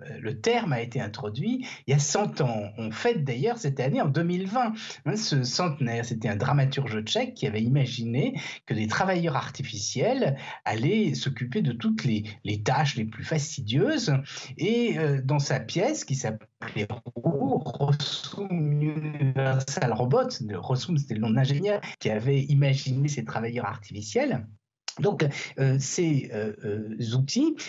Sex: male